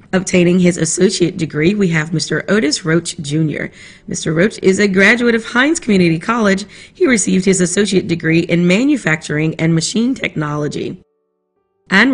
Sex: female